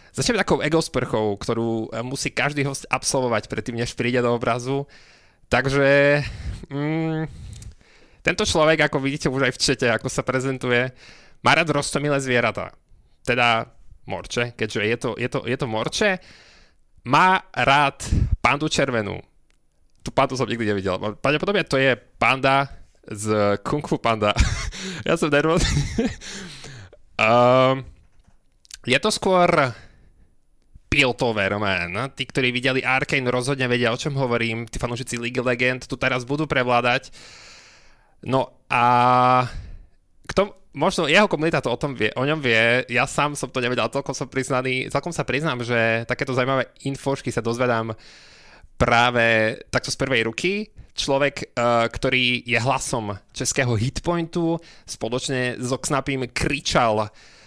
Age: 20-39